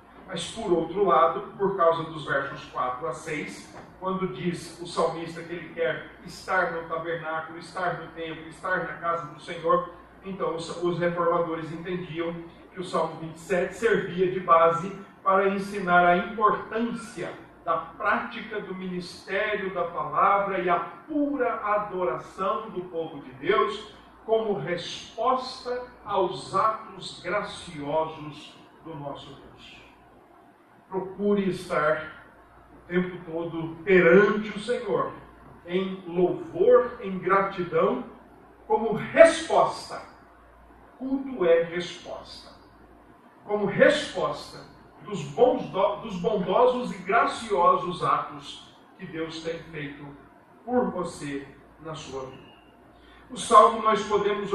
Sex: male